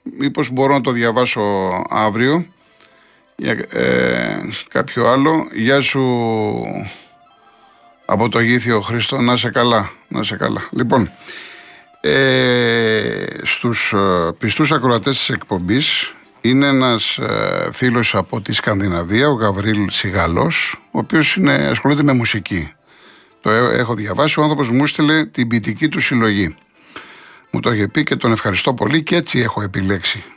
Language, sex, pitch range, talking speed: Greek, male, 105-140 Hz, 130 wpm